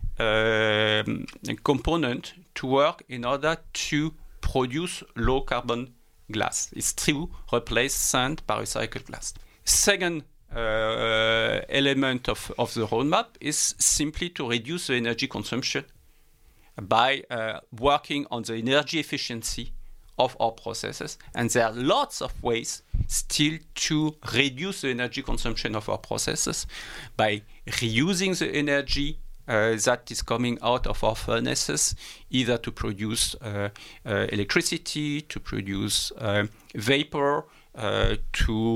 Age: 50-69